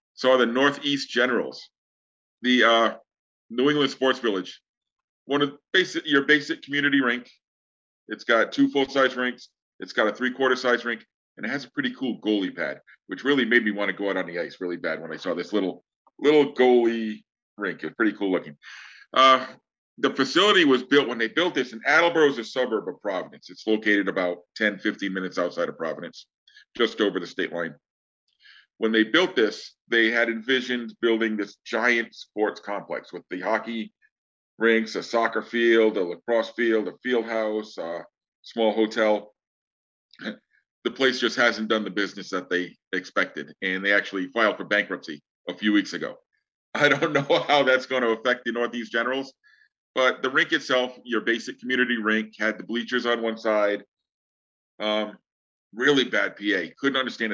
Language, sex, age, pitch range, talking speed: English, male, 40-59, 105-130 Hz, 180 wpm